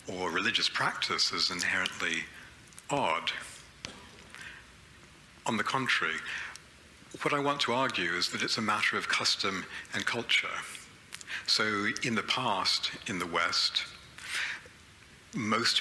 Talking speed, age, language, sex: 120 wpm, 60-79, English, male